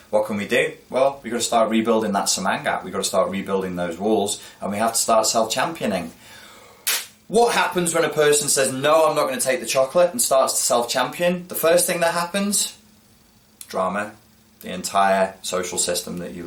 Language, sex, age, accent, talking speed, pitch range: English, male, 20-39, British, 200 wpm, 90-145 Hz